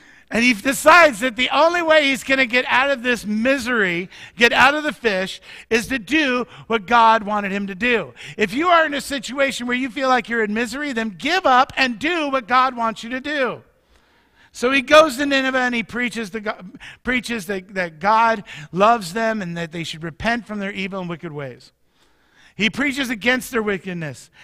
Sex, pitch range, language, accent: male, 185-265 Hz, English, American